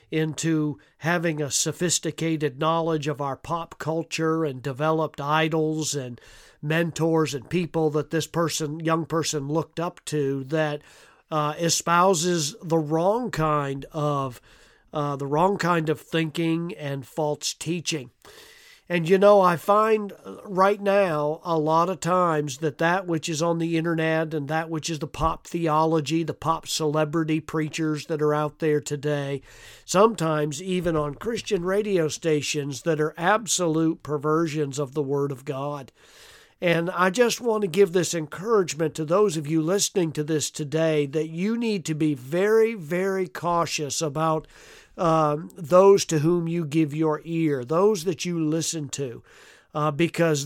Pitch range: 150-180 Hz